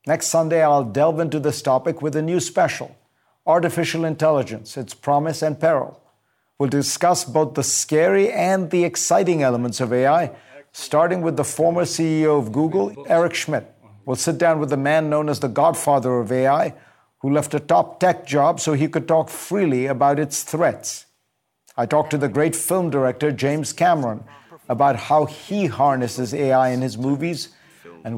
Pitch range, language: 130-160 Hz, English